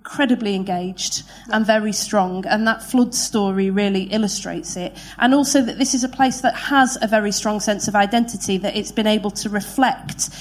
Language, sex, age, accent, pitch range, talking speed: English, female, 30-49, British, 195-225 Hz, 190 wpm